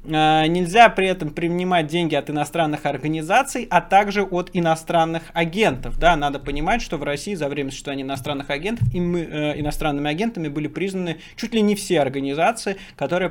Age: 20-39